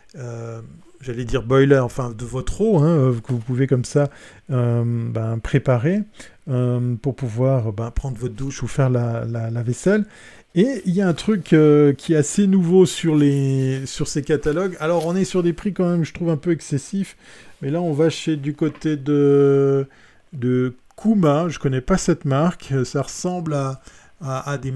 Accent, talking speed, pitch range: French, 195 wpm, 130-165 Hz